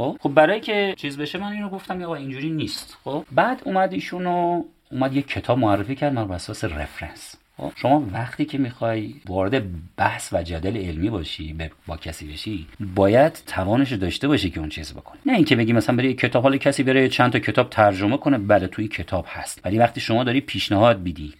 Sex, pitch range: male, 95-140 Hz